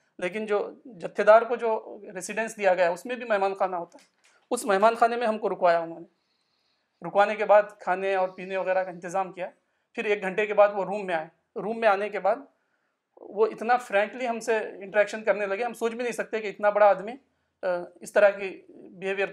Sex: male